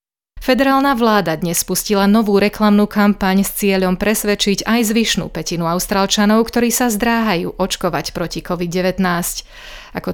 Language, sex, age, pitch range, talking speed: Slovak, female, 30-49, 180-220 Hz, 125 wpm